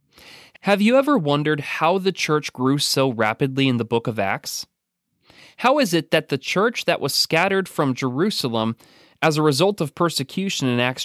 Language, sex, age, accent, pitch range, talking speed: English, male, 30-49, American, 130-180 Hz, 180 wpm